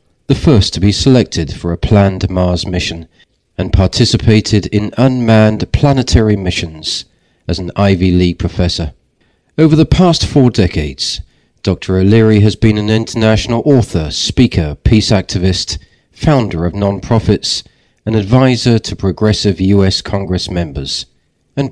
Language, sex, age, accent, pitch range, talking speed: French, male, 40-59, British, 90-115 Hz, 130 wpm